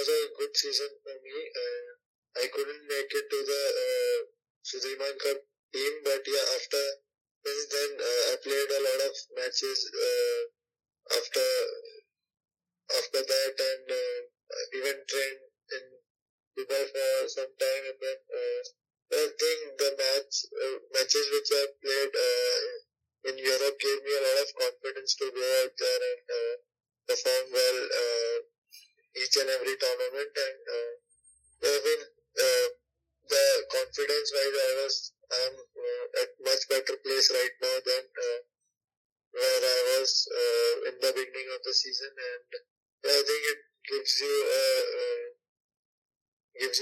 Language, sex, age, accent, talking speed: English, male, 20-39, Indian, 140 wpm